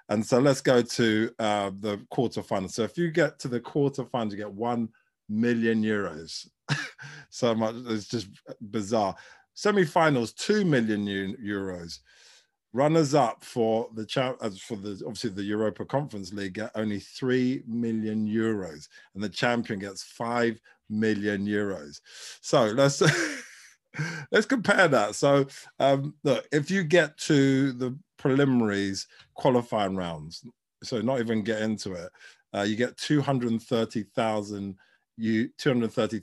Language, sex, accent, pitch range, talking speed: English, male, British, 105-135 Hz, 135 wpm